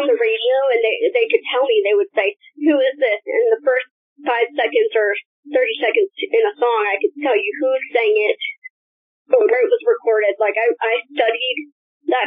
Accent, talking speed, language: American, 200 wpm, English